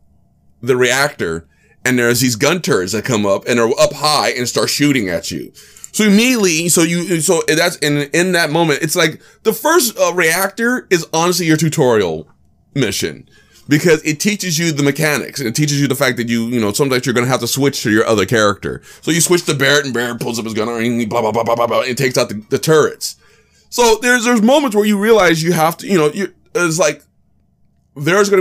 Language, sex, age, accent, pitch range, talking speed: English, male, 20-39, American, 120-175 Hz, 230 wpm